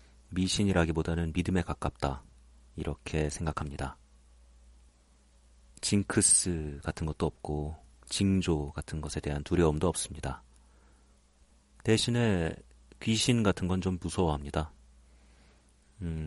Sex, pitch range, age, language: male, 70-90 Hz, 40-59, Korean